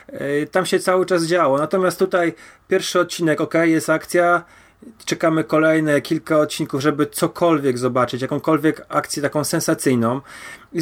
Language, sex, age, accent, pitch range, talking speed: Polish, male, 30-49, native, 135-160 Hz, 135 wpm